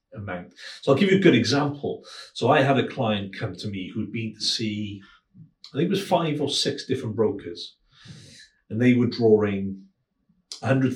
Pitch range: 105-135 Hz